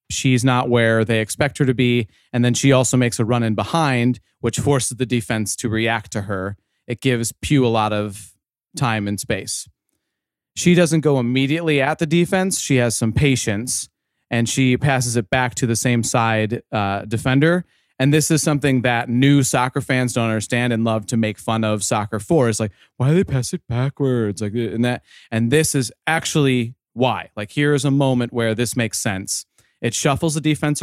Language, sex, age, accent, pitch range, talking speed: English, male, 30-49, American, 115-140 Hz, 200 wpm